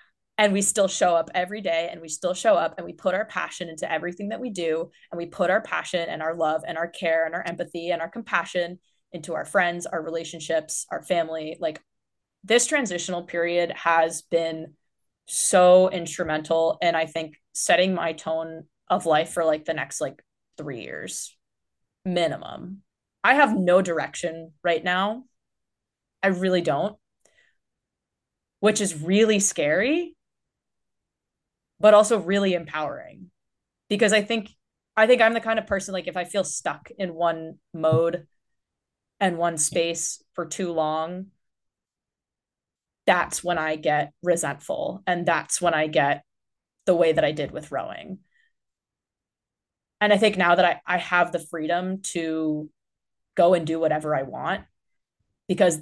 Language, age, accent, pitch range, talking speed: English, 20-39, American, 160-190 Hz, 155 wpm